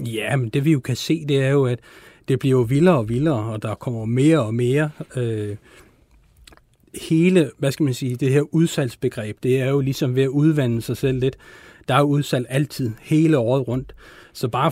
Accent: native